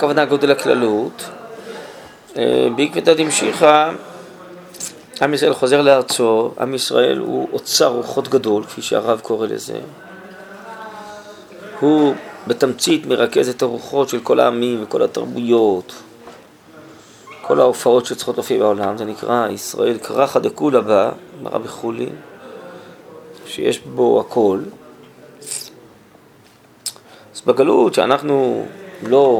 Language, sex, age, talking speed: Hebrew, male, 30-49, 100 wpm